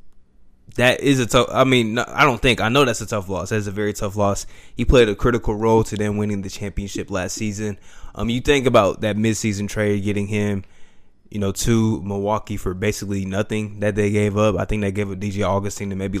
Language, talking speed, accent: English, 230 wpm, American